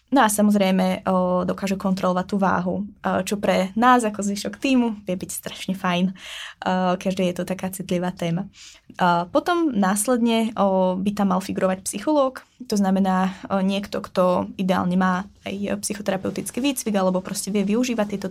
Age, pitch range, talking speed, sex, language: 20-39, 185-210 Hz, 145 wpm, female, Czech